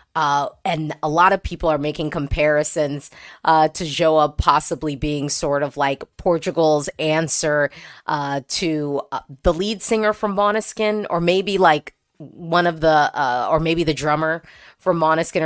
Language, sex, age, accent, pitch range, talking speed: English, female, 20-39, American, 150-210 Hz, 155 wpm